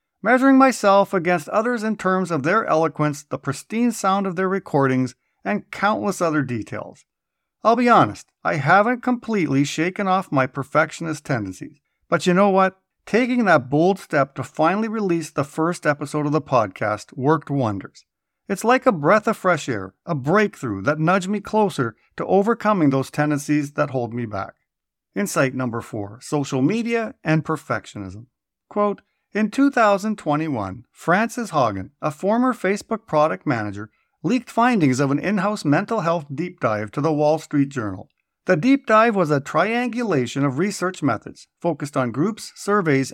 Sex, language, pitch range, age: male, English, 140-210 Hz, 50-69